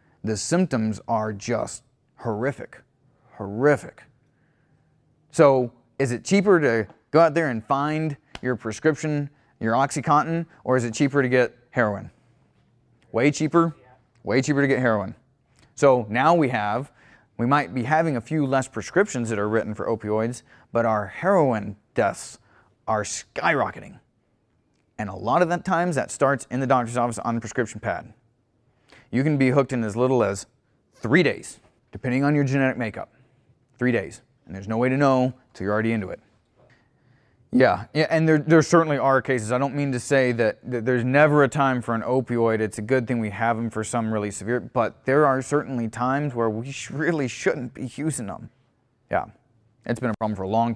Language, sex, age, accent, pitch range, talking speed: English, male, 30-49, American, 115-145 Hz, 180 wpm